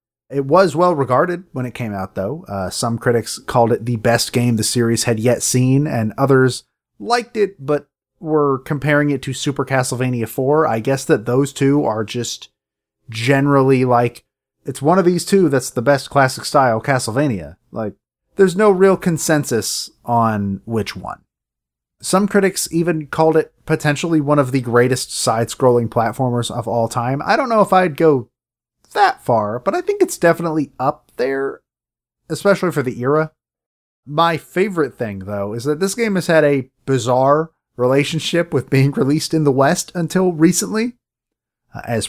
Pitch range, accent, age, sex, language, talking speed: 115-155 Hz, American, 30-49, male, English, 165 wpm